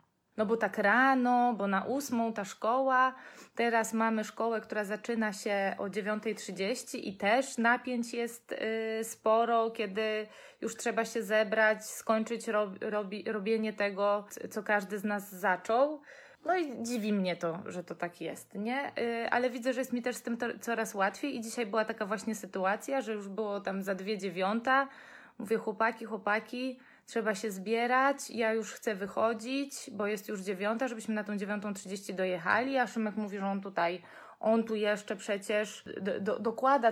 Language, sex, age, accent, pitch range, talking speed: Polish, female, 20-39, native, 205-235 Hz, 165 wpm